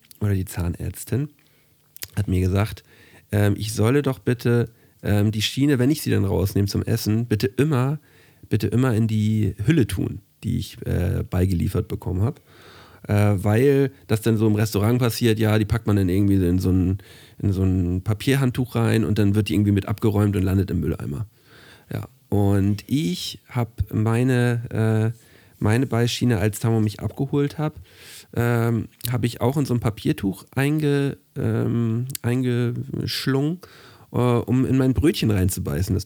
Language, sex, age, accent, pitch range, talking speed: German, male, 40-59, German, 100-125 Hz, 155 wpm